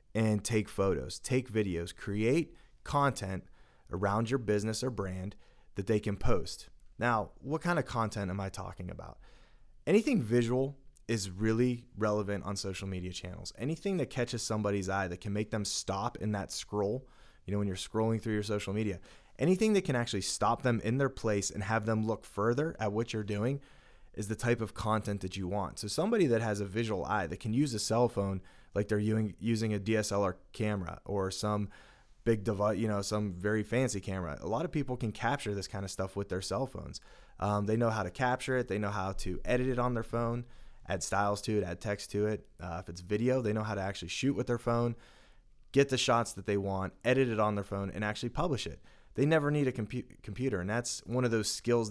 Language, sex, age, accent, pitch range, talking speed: English, male, 20-39, American, 100-120 Hz, 215 wpm